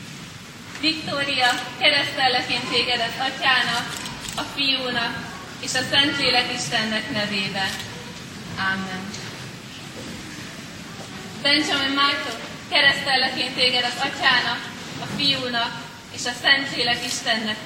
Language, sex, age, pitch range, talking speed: Hungarian, female, 20-39, 215-265 Hz, 95 wpm